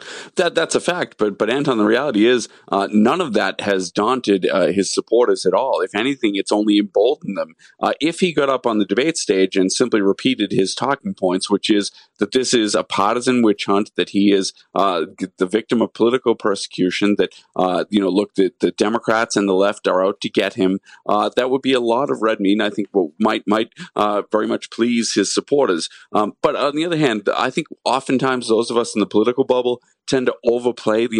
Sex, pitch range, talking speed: male, 100-125 Hz, 225 wpm